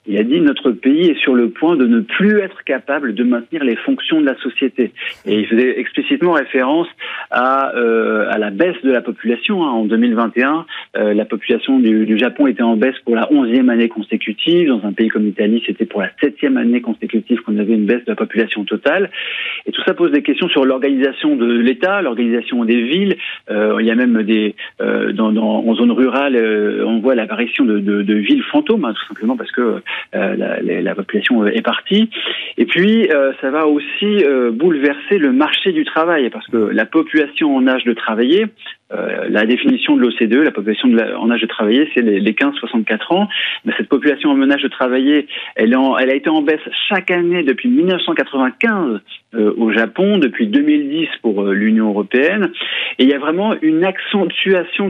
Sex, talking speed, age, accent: male, 195 wpm, 40-59, French